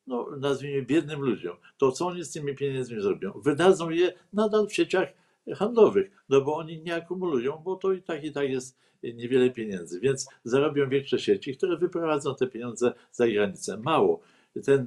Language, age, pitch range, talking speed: Polish, 60-79, 125-155 Hz, 175 wpm